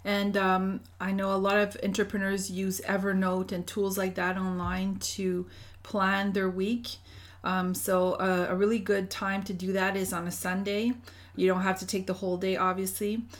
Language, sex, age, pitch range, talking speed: English, female, 30-49, 180-200 Hz, 190 wpm